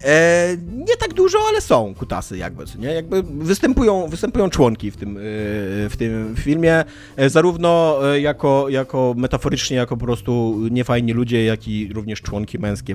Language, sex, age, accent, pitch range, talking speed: Polish, male, 30-49, native, 120-150 Hz, 145 wpm